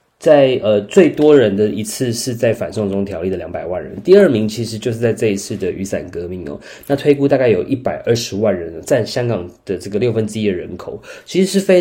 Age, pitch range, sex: 20-39, 105-135 Hz, male